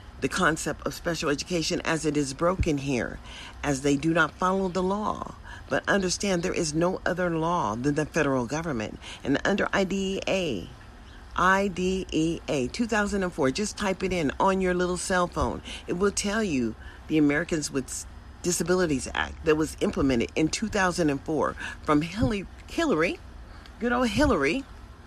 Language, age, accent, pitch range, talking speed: English, 40-59, American, 130-185 Hz, 150 wpm